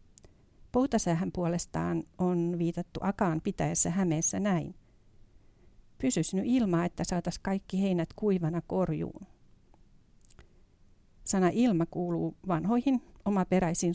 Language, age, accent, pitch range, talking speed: Finnish, 50-69, native, 160-190 Hz, 90 wpm